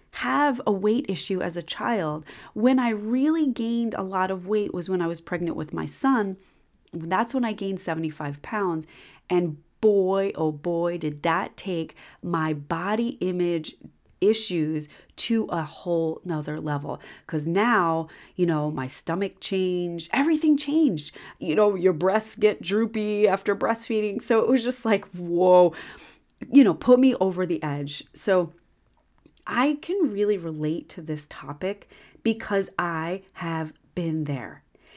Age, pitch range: 30-49, 160-215 Hz